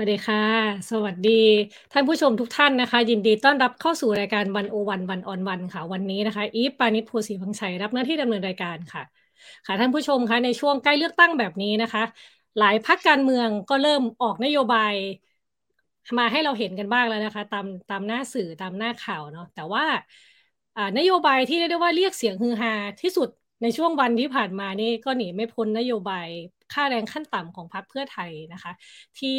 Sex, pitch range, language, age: female, 200-255 Hz, Thai, 20-39